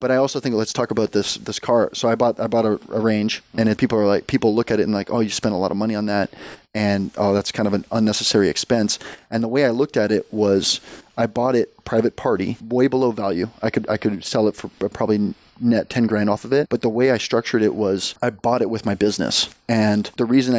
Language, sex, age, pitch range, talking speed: English, male, 20-39, 105-115 Hz, 270 wpm